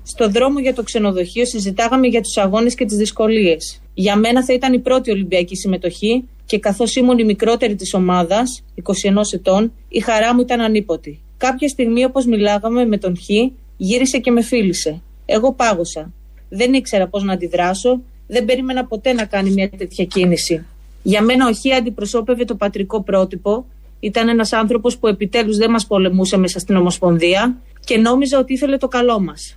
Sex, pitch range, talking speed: female, 195-245 Hz, 175 wpm